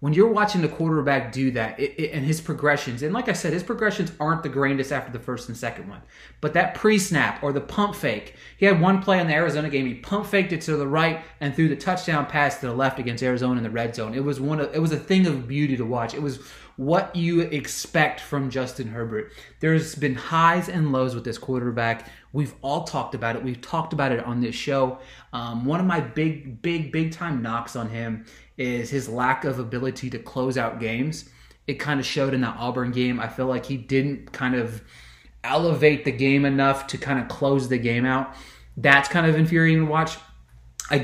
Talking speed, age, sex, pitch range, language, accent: 230 wpm, 20-39, male, 125-160 Hz, English, American